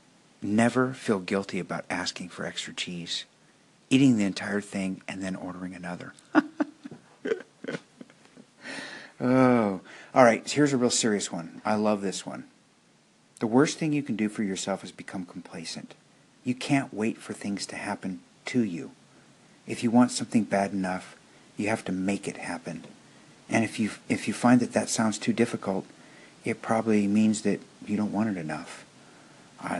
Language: English